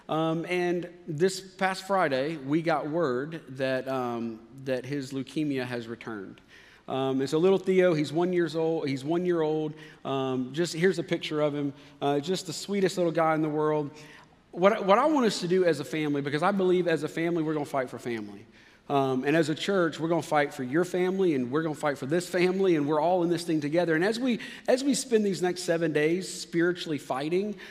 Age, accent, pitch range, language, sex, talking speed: 40-59, American, 135-175 Hz, English, male, 225 wpm